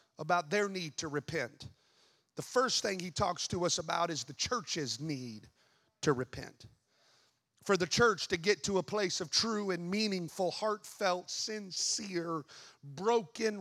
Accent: American